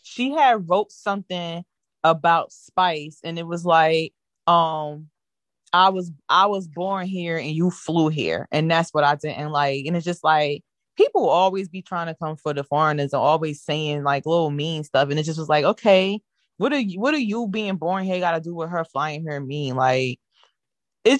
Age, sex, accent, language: 20-39, female, American, English